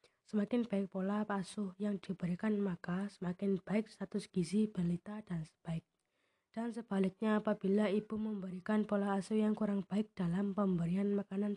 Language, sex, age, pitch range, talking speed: Indonesian, female, 20-39, 185-210 Hz, 140 wpm